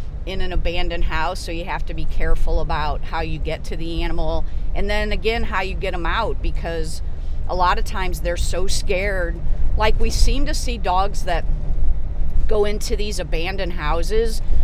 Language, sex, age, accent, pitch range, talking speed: English, female, 40-59, American, 155-195 Hz, 185 wpm